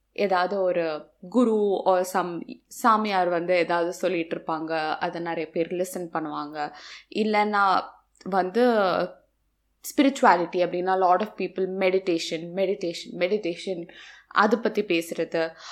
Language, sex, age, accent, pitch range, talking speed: Tamil, female, 20-39, native, 185-260 Hz, 105 wpm